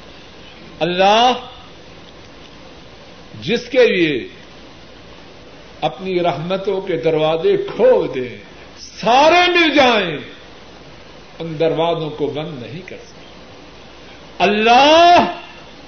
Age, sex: 50-69, male